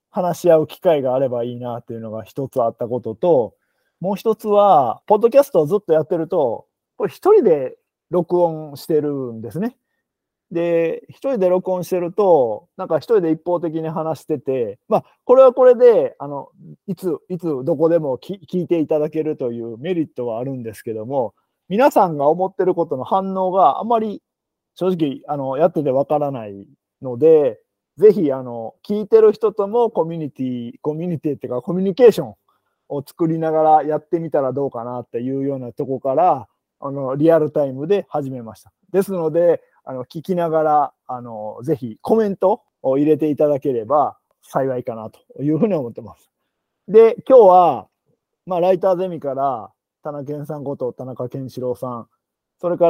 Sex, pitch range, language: male, 135-195 Hz, Japanese